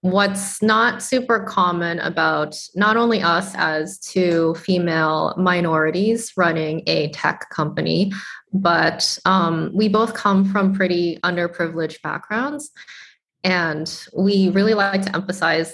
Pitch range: 165-195 Hz